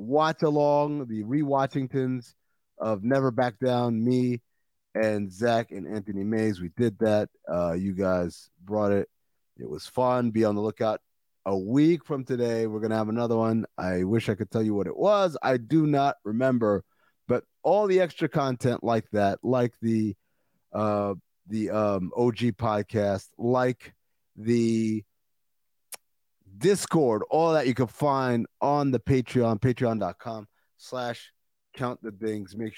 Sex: male